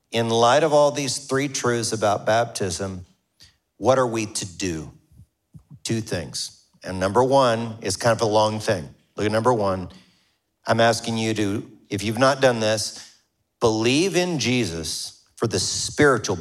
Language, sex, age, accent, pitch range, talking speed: English, male, 40-59, American, 110-130 Hz, 160 wpm